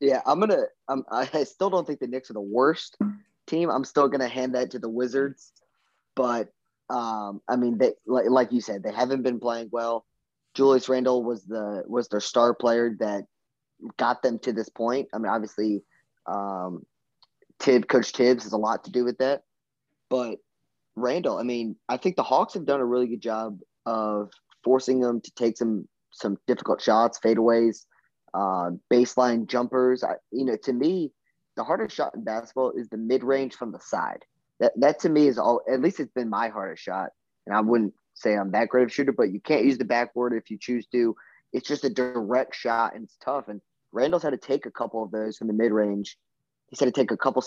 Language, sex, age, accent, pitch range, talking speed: English, male, 20-39, American, 110-130 Hz, 210 wpm